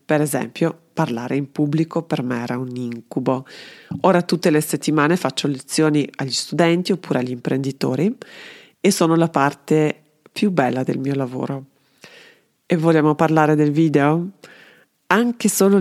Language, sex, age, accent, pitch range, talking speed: Italian, female, 30-49, native, 140-165 Hz, 140 wpm